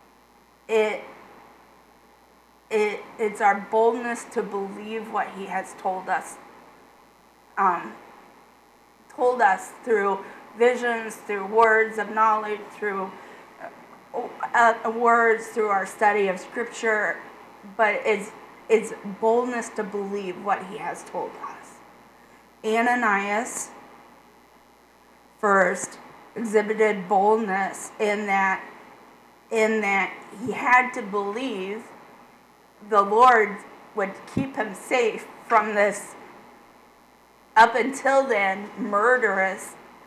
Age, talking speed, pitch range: 30-49, 95 wpm, 205-235 Hz